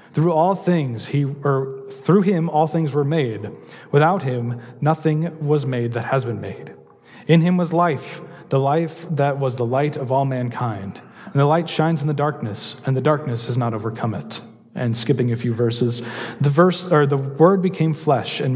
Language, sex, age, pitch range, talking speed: English, male, 30-49, 125-160 Hz, 195 wpm